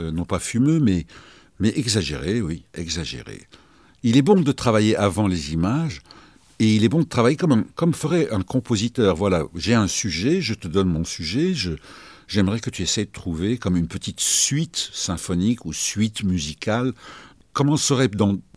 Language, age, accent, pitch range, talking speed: French, 60-79, French, 95-130 Hz, 180 wpm